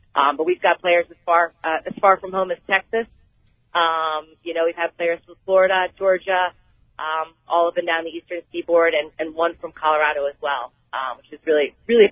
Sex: female